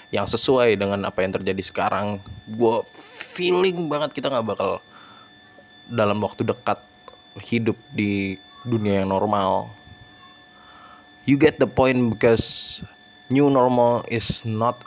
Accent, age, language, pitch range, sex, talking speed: native, 20-39, Indonesian, 100-120 Hz, male, 120 wpm